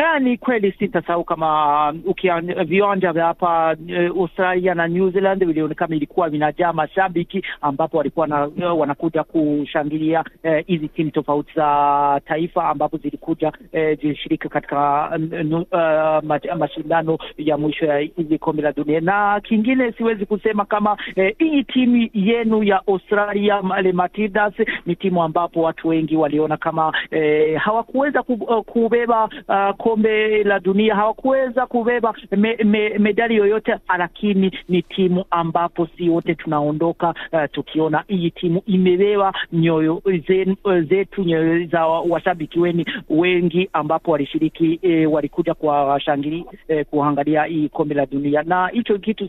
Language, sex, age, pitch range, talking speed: Swahili, male, 50-69, 160-210 Hz, 135 wpm